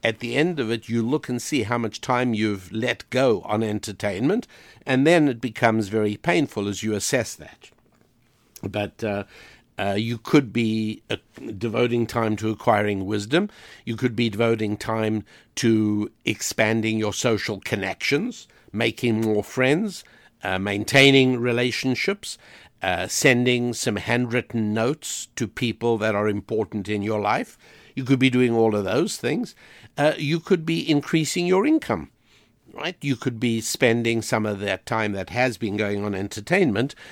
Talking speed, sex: 160 wpm, male